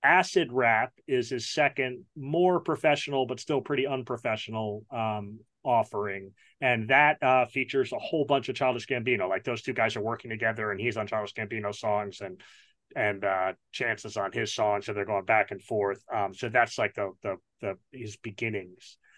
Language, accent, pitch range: English, American, 115-160 Hz